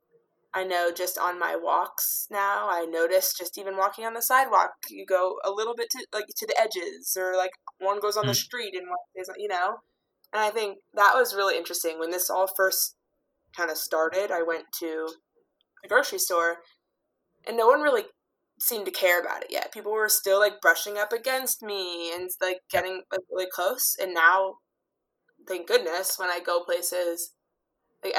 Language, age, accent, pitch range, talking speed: English, 20-39, American, 175-250 Hz, 190 wpm